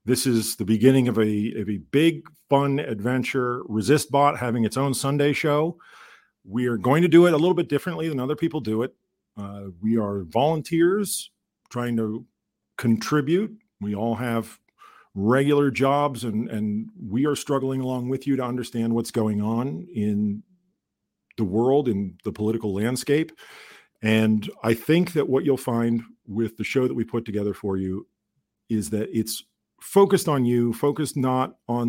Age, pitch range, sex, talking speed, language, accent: 50-69, 110-140 Hz, male, 165 wpm, English, American